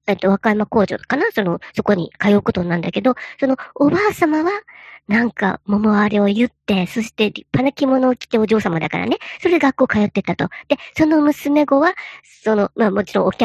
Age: 50-69